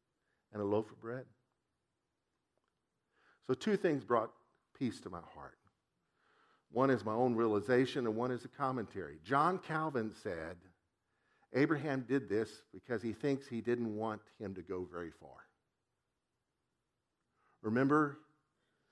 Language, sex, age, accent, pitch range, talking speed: English, male, 50-69, American, 110-135 Hz, 130 wpm